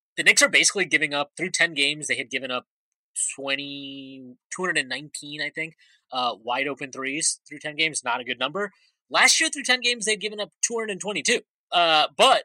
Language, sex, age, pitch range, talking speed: English, male, 20-39, 140-210 Hz, 180 wpm